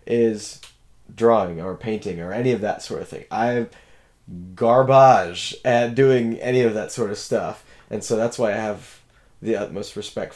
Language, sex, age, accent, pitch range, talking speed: English, male, 20-39, American, 105-120 Hz, 175 wpm